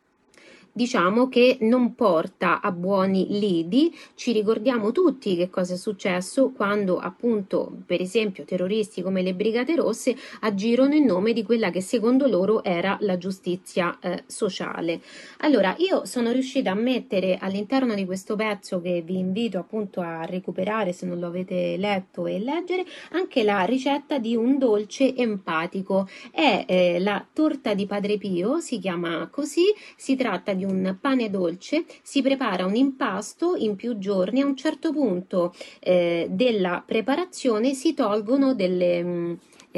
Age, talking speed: 30-49, 150 wpm